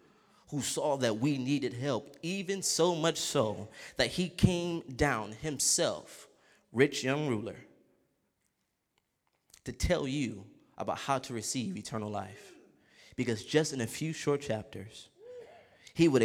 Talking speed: 135 wpm